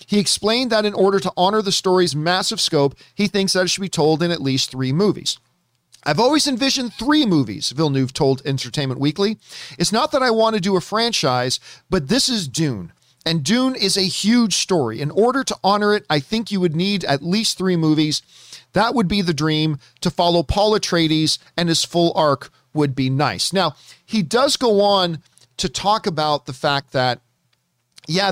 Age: 40-59